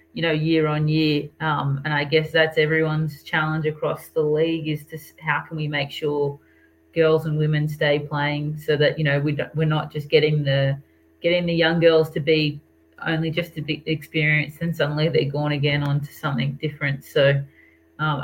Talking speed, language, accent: 195 wpm, English, Australian